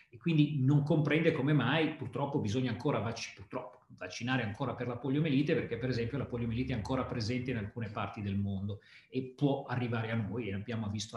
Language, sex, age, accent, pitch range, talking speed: Italian, male, 40-59, native, 115-150 Hz, 195 wpm